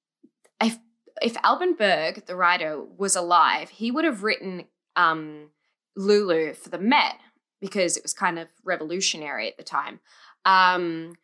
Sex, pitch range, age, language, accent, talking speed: female, 165-235 Hz, 10-29, English, Australian, 145 wpm